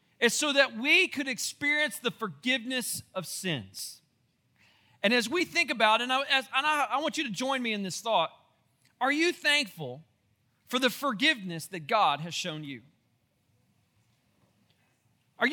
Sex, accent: male, American